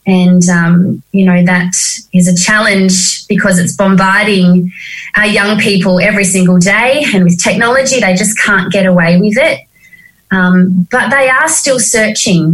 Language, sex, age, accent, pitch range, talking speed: English, female, 20-39, Australian, 180-220 Hz, 160 wpm